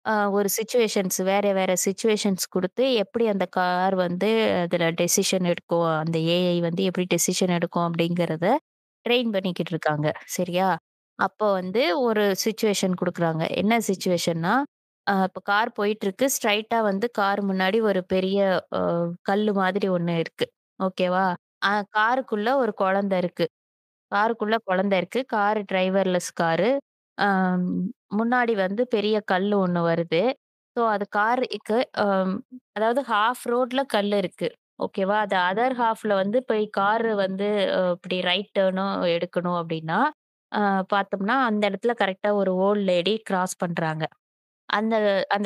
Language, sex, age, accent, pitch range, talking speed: Tamil, female, 20-39, native, 180-215 Hz, 120 wpm